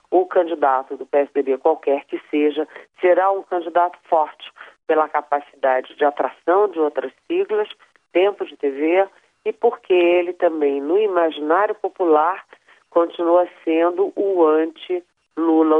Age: 40-59